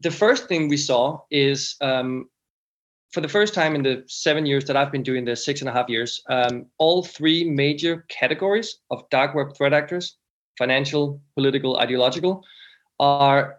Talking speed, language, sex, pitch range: 170 wpm, English, male, 125-150 Hz